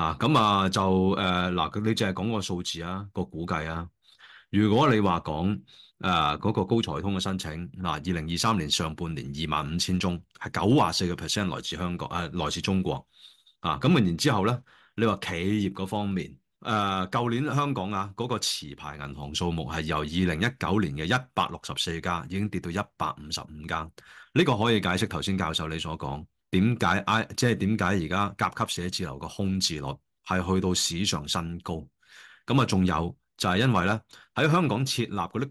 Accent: native